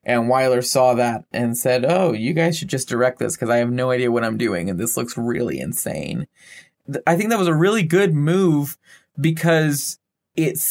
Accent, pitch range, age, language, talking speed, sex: American, 125-155 Hz, 20-39, English, 200 wpm, male